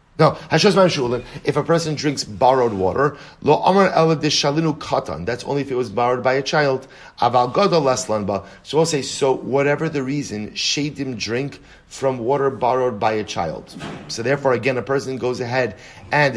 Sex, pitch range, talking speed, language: male, 120-145 Hz, 145 wpm, English